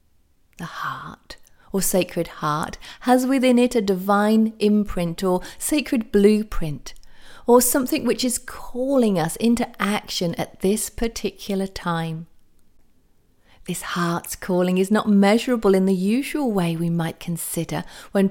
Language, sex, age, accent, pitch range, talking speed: English, female, 40-59, British, 170-230 Hz, 130 wpm